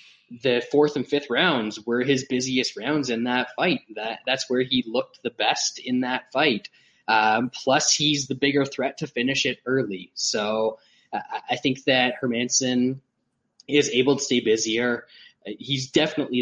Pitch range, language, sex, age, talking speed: 115-140 Hz, English, male, 10-29, 165 wpm